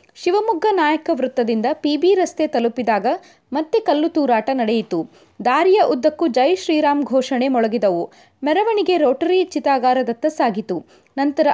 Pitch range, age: 255-345 Hz, 20-39